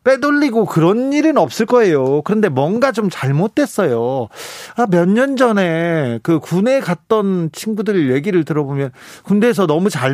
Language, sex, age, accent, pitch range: Korean, male, 40-59, native, 140-205 Hz